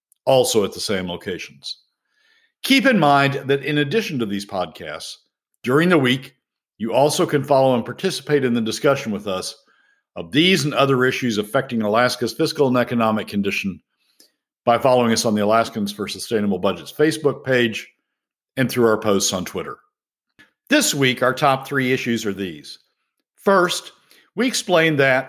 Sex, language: male, English